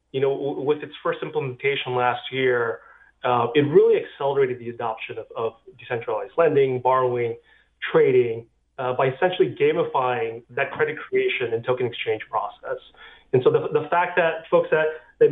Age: 30-49